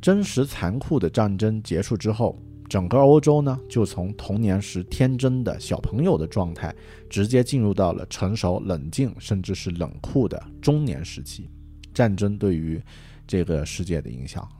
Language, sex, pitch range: Chinese, male, 85-110 Hz